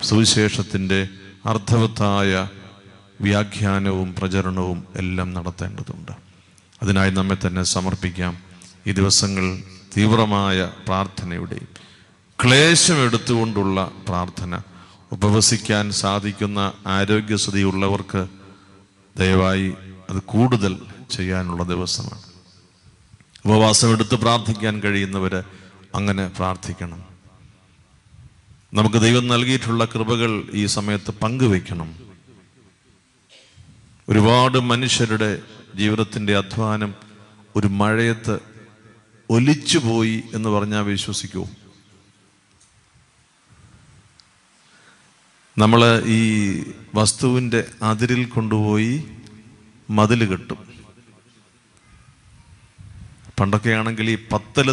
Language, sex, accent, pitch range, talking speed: Malayalam, male, native, 95-115 Hz, 60 wpm